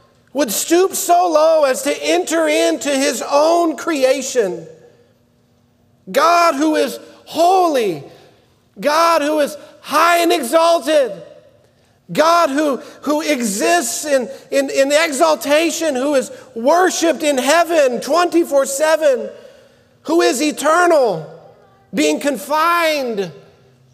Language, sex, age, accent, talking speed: English, male, 50-69, American, 100 wpm